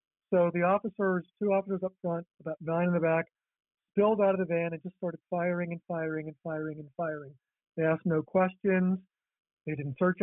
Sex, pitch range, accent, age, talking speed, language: male, 155-180 Hz, American, 50-69, 200 wpm, English